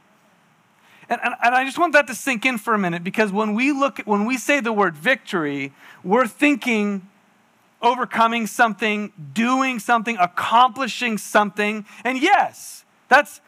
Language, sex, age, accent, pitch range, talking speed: English, male, 40-59, American, 200-260 Hz, 150 wpm